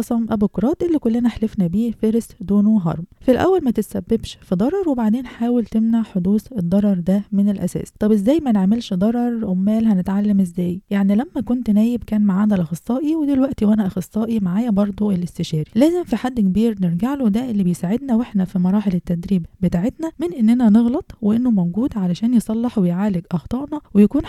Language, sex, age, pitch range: Arabic, female, 20-39, 190-235 Hz